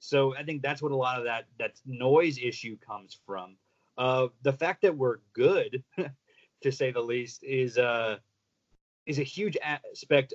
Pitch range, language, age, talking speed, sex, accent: 125-145 Hz, English, 30-49, 175 wpm, male, American